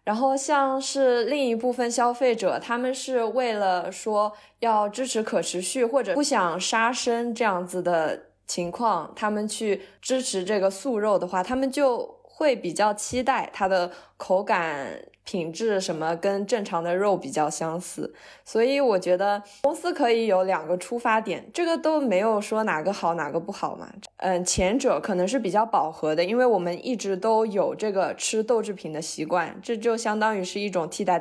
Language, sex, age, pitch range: Chinese, female, 20-39, 180-240 Hz